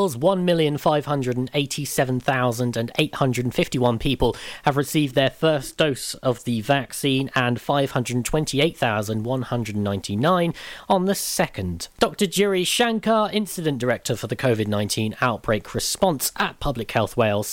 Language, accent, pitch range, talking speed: English, British, 120-155 Hz, 100 wpm